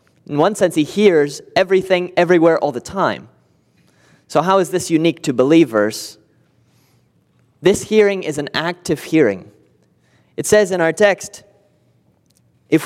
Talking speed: 135 wpm